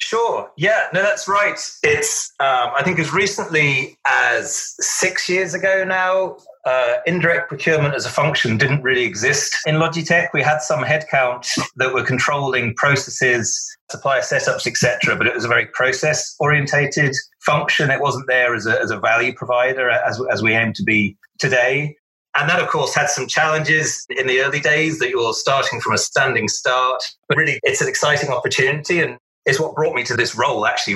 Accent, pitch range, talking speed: British, 125-170 Hz, 185 wpm